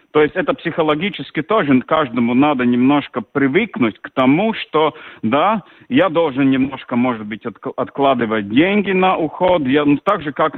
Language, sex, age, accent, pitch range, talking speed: Russian, male, 40-59, native, 125-160 Hz, 155 wpm